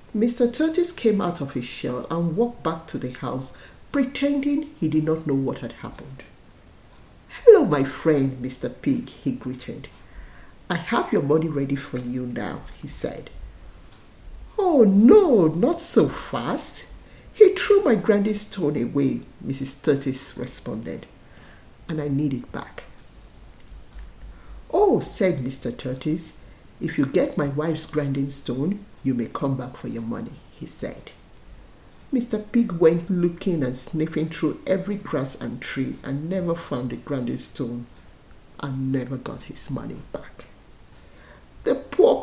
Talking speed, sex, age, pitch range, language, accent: 145 wpm, male, 50-69, 130-205 Hz, English, Nigerian